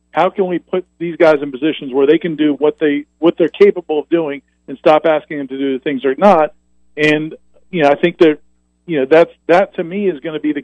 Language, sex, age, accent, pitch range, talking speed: English, male, 50-69, American, 145-190 Hz, 260 wpm